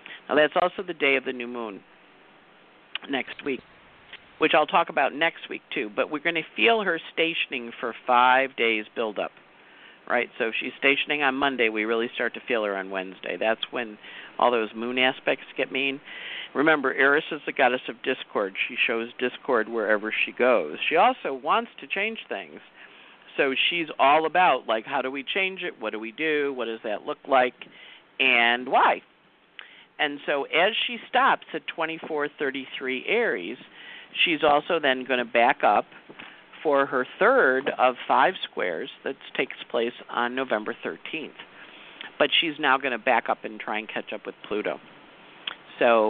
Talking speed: 175 wpm